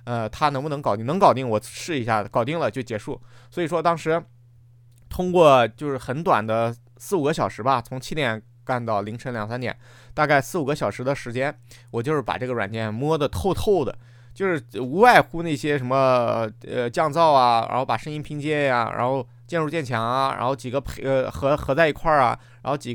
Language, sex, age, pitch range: Chinese, male, 20-39, 120-145 Hz